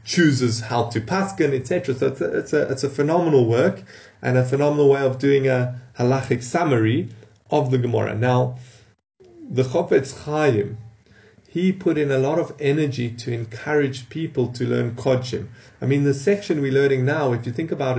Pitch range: 125-160 Hz